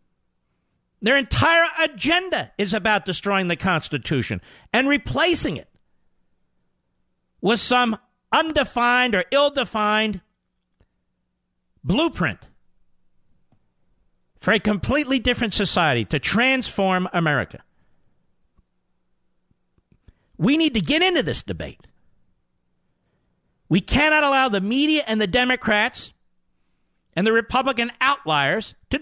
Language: English